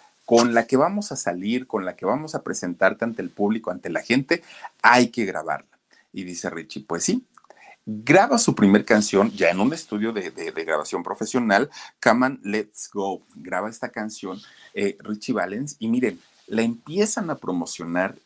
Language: Spanish